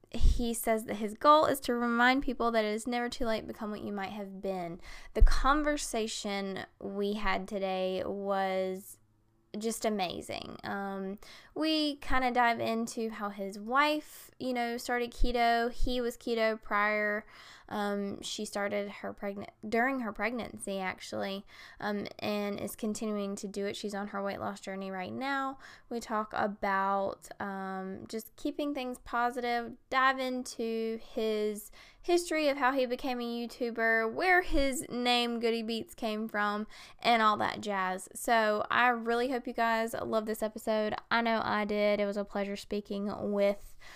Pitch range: 200-245 Hz